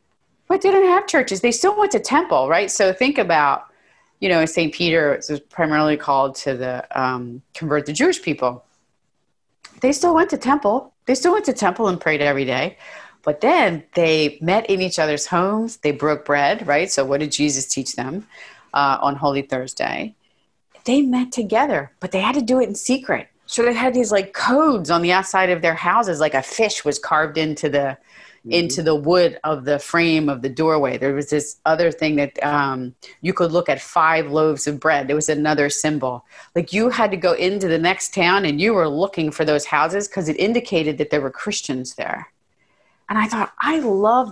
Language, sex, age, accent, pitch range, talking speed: English, female, 30-49, American, 150-205 Hz, 205 wpm